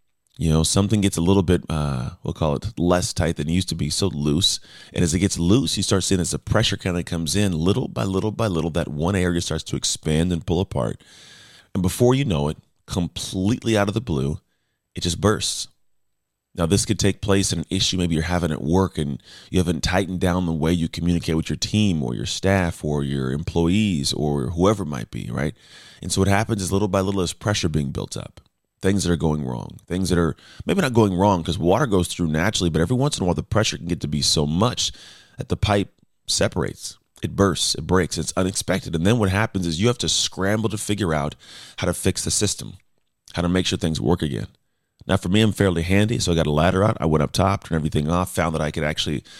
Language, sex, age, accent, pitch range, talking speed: English, male, 30-49, American, 80-100 Hz, 245 wpm